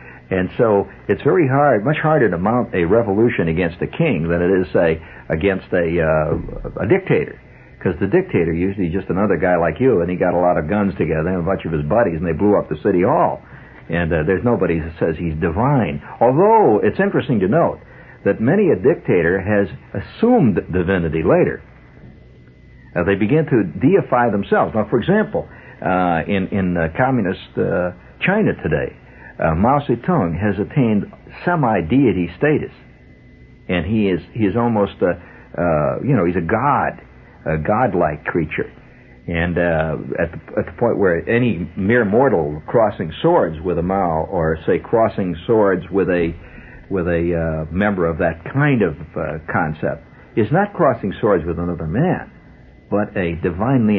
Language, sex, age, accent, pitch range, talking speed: English, male, 60-79, American, 80-100 Hz, 175 wpm